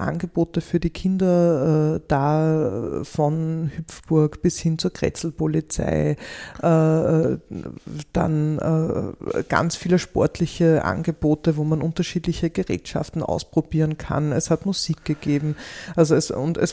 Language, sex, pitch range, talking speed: German, female, 150-170 Hz, 100 wpm